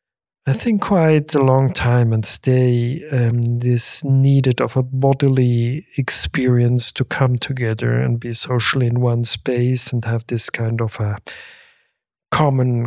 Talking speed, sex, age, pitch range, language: 145 wpm, male, 40-59, 120-145 Hz, Finnish